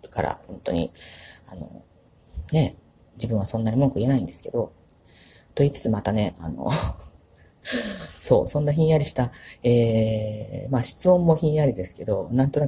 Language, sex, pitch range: Japanese, female, 110-155 Hz